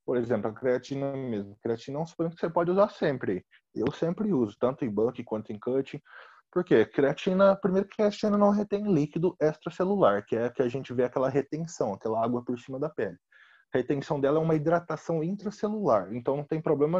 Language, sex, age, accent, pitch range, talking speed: Portuguese, male, 20-39, Brazilian, 115-170 Hz, 210 wpm